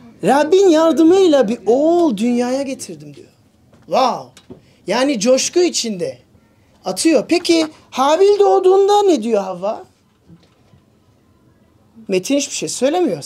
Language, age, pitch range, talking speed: Turkish, 40-59, 200-285 Hz, 105 wpm